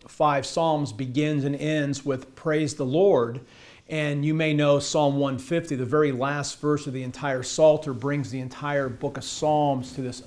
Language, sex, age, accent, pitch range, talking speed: English, male, 50-69, American, 130-155 Hz, 180 wpm